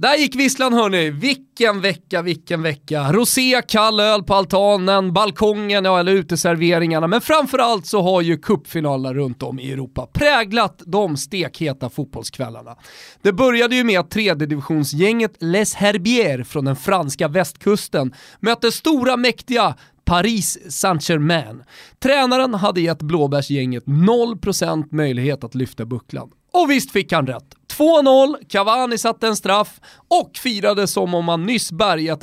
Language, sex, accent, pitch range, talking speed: Swedish, male, native, 165-225 Hz, 140 wpm